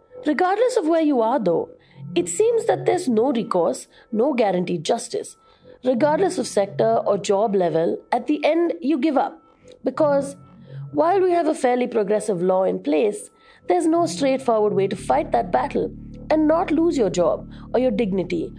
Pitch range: 190-285 Hz